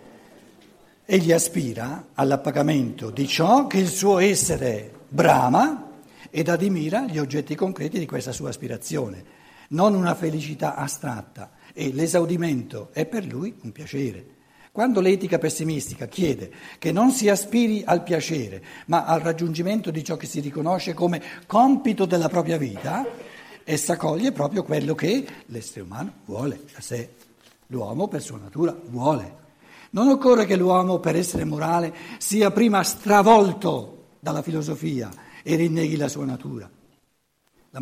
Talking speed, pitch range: 135 wpm, 130-185 Hz